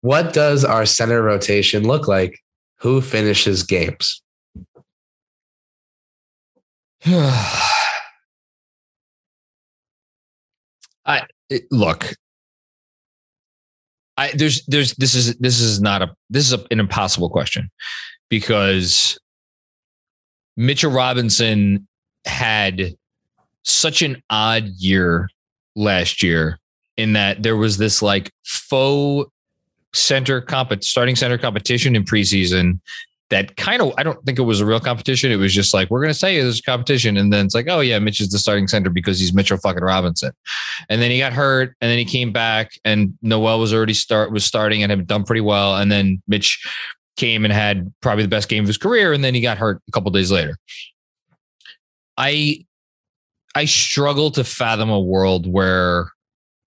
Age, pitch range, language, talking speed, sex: 20-39, 100-125 Hz, English, 150 wpm, male